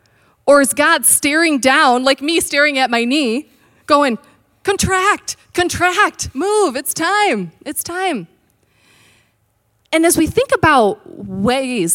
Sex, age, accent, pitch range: female, 30-49, American, 180-285 Hz